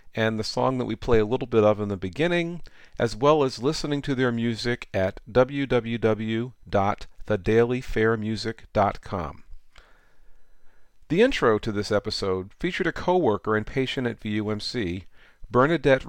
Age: 40-59